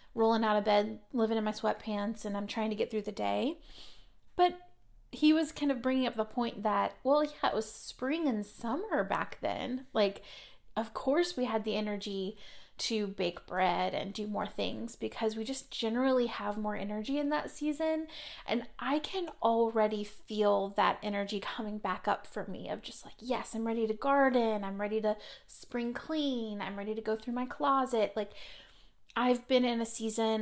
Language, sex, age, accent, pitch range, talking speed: English, female, 30-49, American, 210-260 Hz, 190 wpm